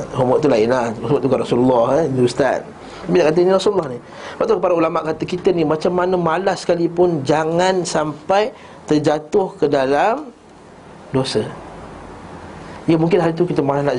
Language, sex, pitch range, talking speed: Malay, male, 150-190 Hz, 165 wpm